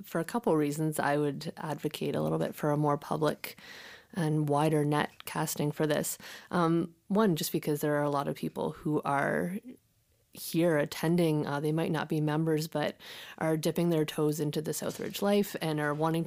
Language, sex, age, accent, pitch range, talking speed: English, female, 30-49, American, 150-165 Hz, 195 wpm